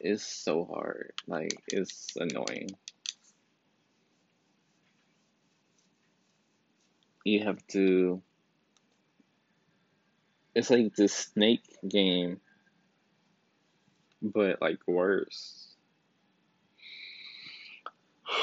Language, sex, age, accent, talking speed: English, male, 20-39, American, 55 wpm